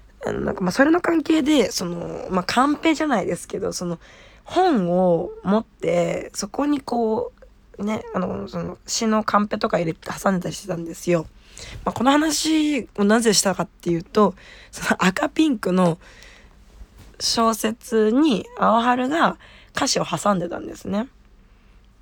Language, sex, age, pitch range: Japanese, female, 20-39, 175-225 Hz